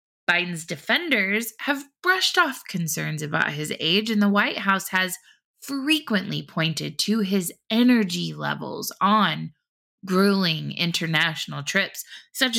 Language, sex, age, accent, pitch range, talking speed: English, female, 20-39, American, 170-215 Hz, 120 wpm